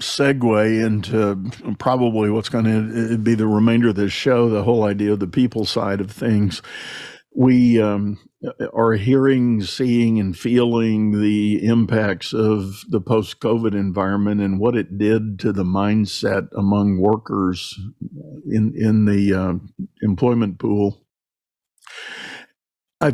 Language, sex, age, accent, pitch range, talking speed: English, male, 50-69, American, 100-115 Hz, 130 wpm